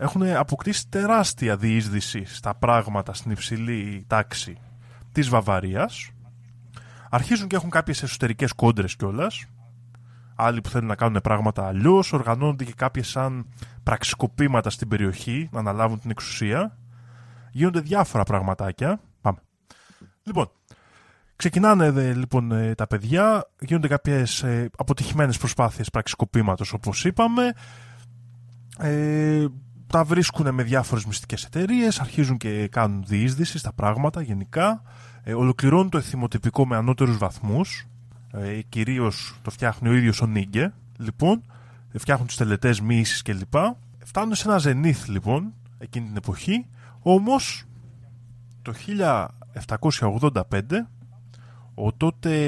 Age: 20-39